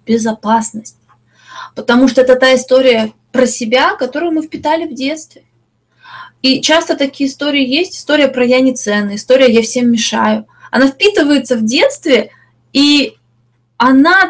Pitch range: 220-275 Hz